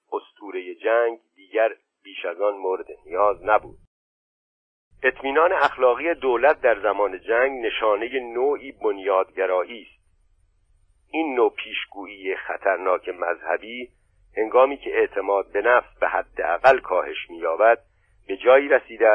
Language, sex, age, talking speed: Persian, male, 50-69, 115 wpm